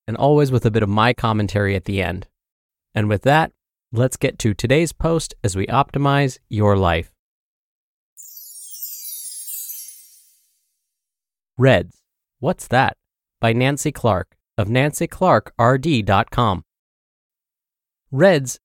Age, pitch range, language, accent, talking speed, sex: 30-49, 100-140 Hz, English, American, 105 wpm, male